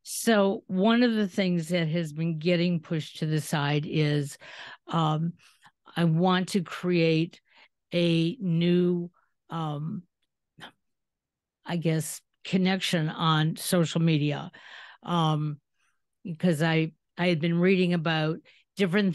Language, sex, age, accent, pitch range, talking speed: English, female, 50-69, American, 160-190 Hz, 115 wpm